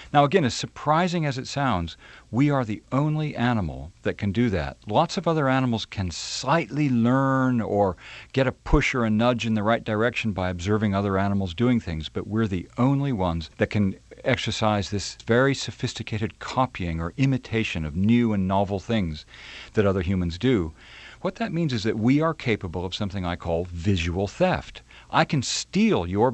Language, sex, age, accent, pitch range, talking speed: English, male, 50-69, American, 95-130 Hz, 185 wpm